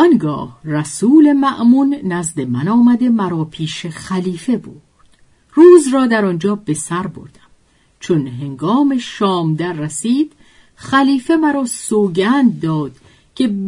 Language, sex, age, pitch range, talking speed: Persian, female, 50-69, 160-240 Hz, 120 wpm